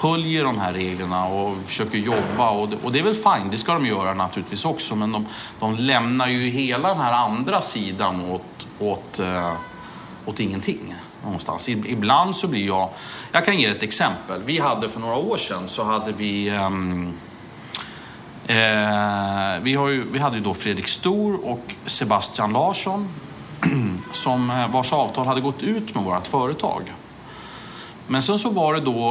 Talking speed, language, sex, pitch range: 170 wpm, English, male, 100-135 Hz